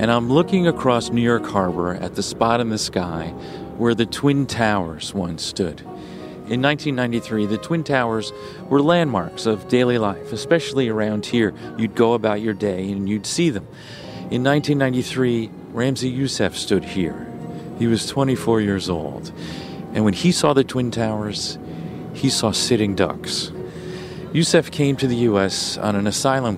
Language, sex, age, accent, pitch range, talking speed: English, male, 40-59, American, 95-130 Hz, 160 wpm